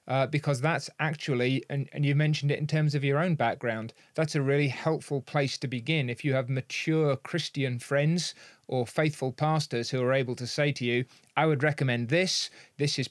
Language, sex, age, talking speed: English, male, 30-49, 200 wpm